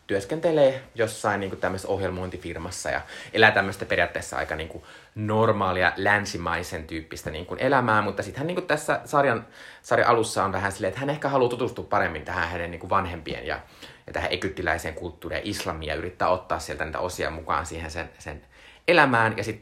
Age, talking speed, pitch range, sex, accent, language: 30-49, 165 wpm, 85-105 Hz, male, native, Finnish